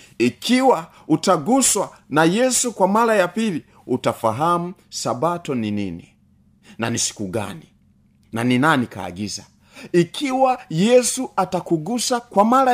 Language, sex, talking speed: Swahili, male, 120 wpm